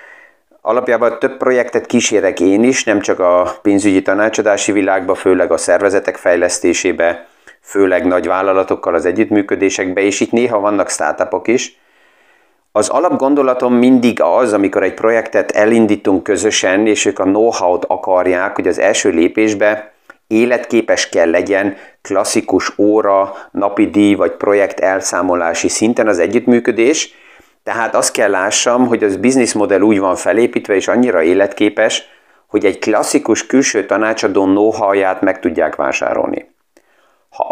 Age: 30-49